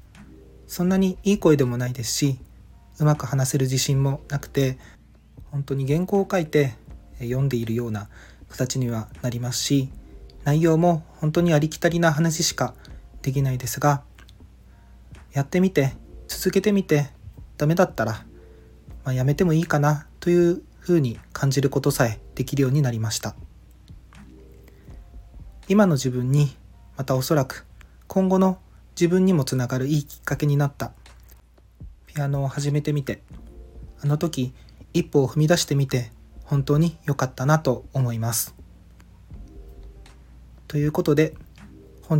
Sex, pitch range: male, 115-150 Hz